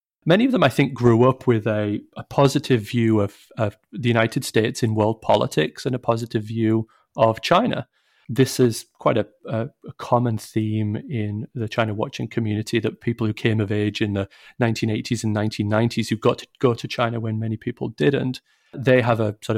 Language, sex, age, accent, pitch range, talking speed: English, male, 30-49, British, 110-130 Hz, 195 wpm